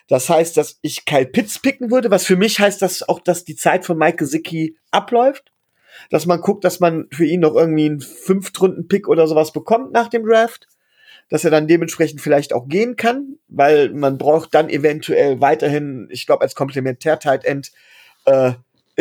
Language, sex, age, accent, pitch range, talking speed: German, male, 40-59, German, 155-220 Hz, 185 wpm